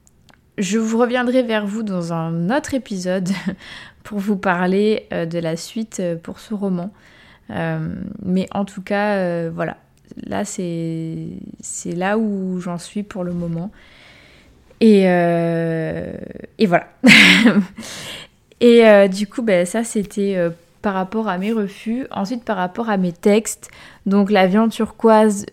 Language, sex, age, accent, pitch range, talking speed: French, female, 20-39, French, 175-215 Hz, 140 wpm